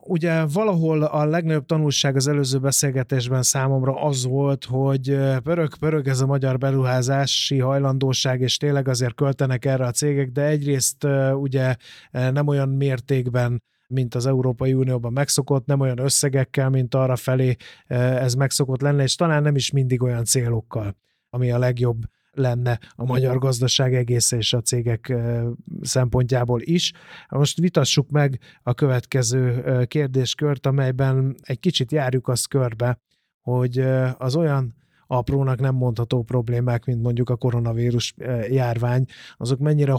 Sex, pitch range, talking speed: male, 125-140 Hz, 135 wpm